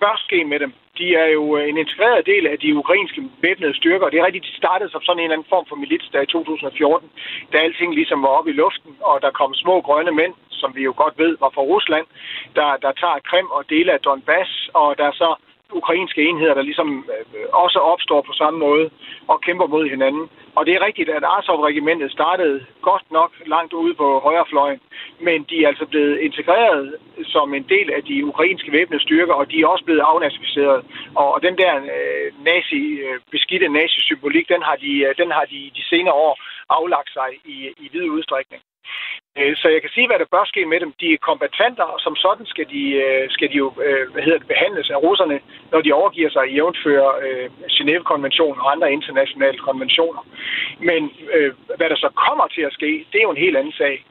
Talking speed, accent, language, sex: 205 wpm, native, Danish, male